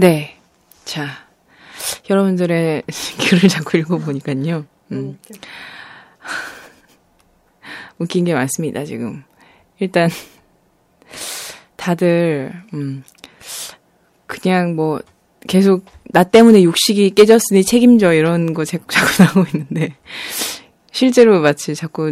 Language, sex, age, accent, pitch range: Korean, female, 20-39, native, 155-195 Hz